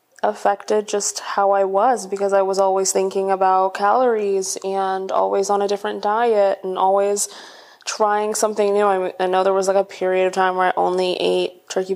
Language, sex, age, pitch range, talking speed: English, female, 20-39, 180-200 Hz, 190 wpm